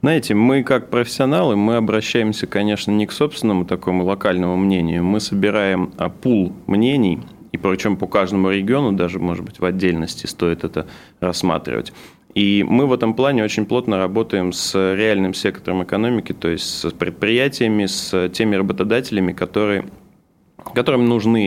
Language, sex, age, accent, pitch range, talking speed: Russian, male, 20-39, native, 95-115 Hz, 145 wpm